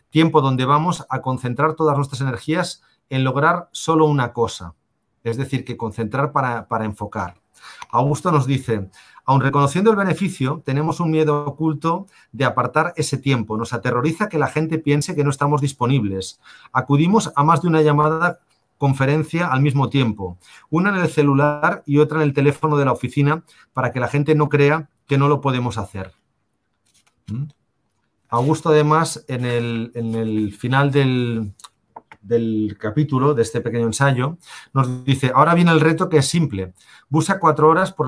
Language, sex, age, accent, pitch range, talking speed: Spanish, male, 40-59, Spanish, 120-155 Hz, 165 wpm